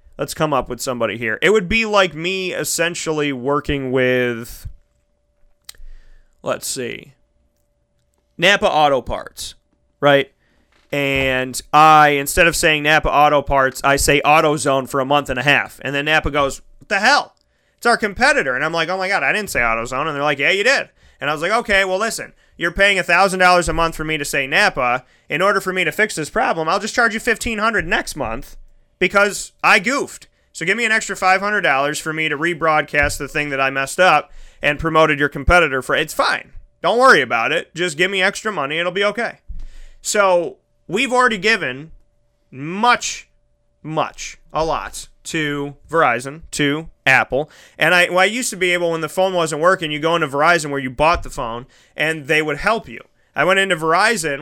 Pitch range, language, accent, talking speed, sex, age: 140-185 Hz, English, American, 195 wpm, male, 30-49